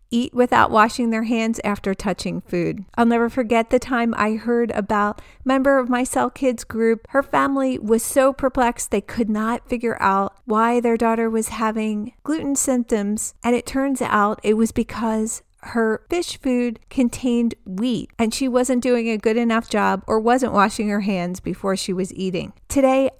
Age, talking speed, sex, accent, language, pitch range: 40-59, 180 wpm, female, American, English, 210-250 Hz